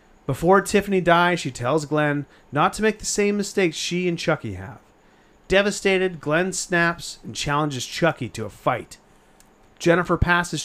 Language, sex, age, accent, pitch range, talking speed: English, male, 30-49, American, 130-180 Hz, 150 wpm